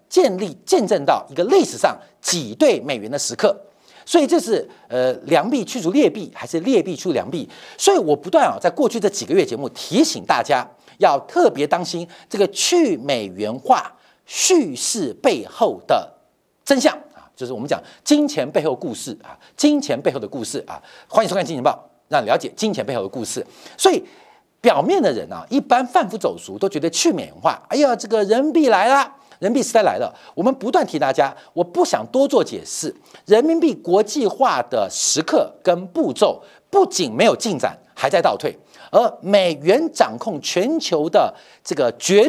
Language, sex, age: Chinese, male, 50-69